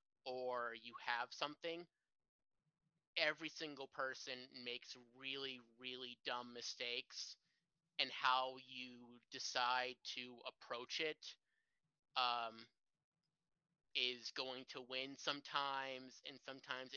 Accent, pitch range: American, 125-140 Hz